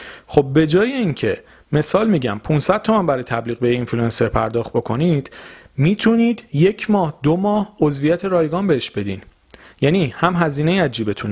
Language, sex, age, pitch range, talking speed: Persian, male, 40-59, 120-165 Hz, 150 wpm